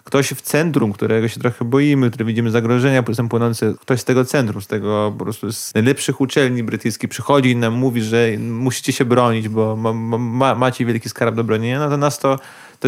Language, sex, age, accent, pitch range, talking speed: Polish, male, 30-49, native, 115-135 Hz, 210 wpm